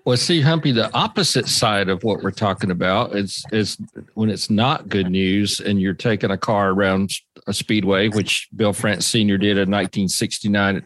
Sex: male